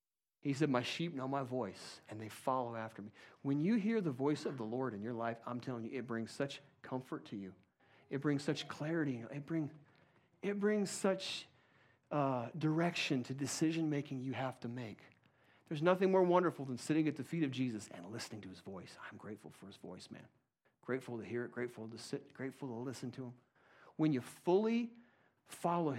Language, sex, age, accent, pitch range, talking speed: English, male, 40-59, American, 125-165 Hz, 205 wpm